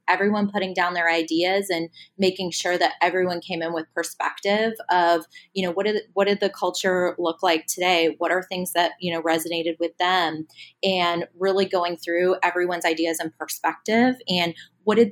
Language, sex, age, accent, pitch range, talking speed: English, female, 20-39, American, 165-185 Hz, 185 wpm